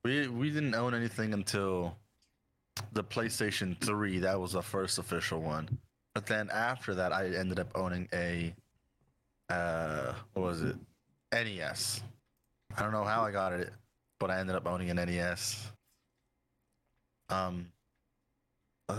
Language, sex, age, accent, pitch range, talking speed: English, male, 20-39, American, 95-115 Hz, 140 wpm